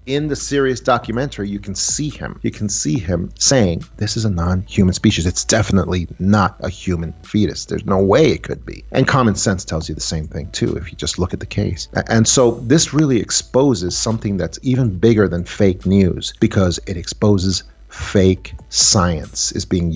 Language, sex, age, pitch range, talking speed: English, male, 40-59, 90-115 Hz, 195 wpm